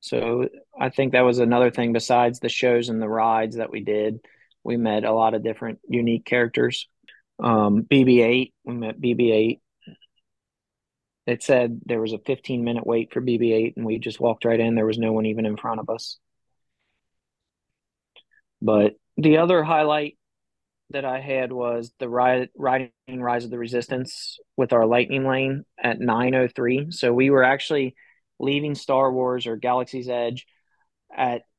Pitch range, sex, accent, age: 115-130 Hz, male, American, 20-39